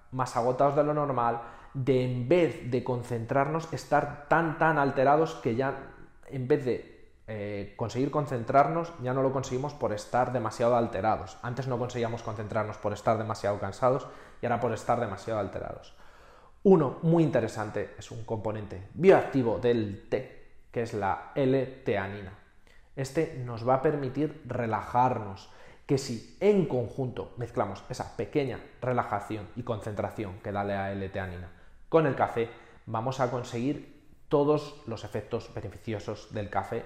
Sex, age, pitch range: male, 20-39, 100-130 Hz